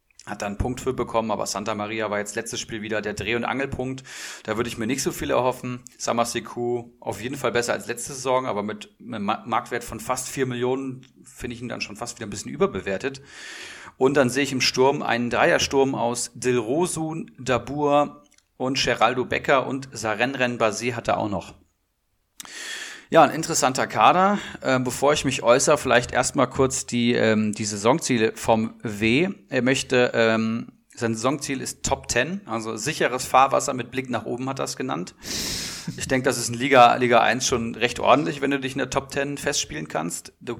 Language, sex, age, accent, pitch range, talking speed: German, male, 40-59, German, 115-140 Hz, 190 wpm